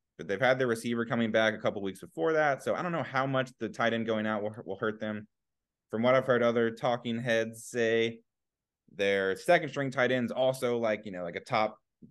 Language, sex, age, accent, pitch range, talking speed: English, male, 20-39, American, 95-120 Hz, 235 wpm